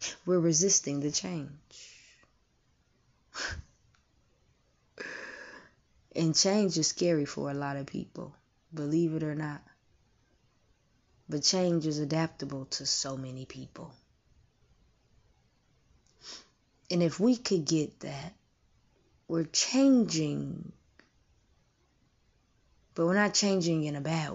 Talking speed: 100 wpm